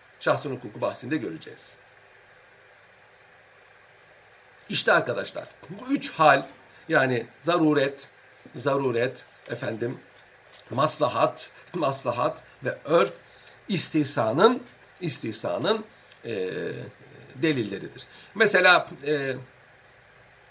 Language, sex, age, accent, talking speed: Turkish, male, 60-79, native, 65 wpm